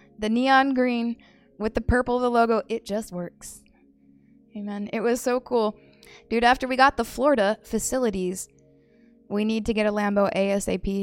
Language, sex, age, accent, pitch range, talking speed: English, female, 20-39, American, 200-250 Hz, 165 wpm